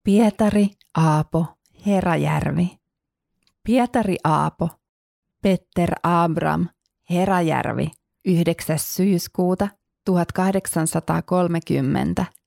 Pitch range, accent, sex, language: 165-195 Hz, native, female, Finnish